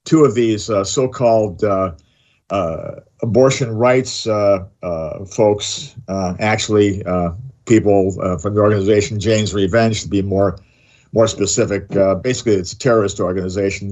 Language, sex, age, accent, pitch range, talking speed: English, male, 50-69, American, 100-115 Hz, 140 wpm